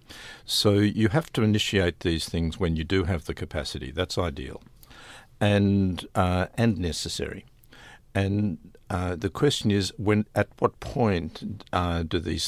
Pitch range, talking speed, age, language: 85-105 Hz, 150 wpm, 50-69, English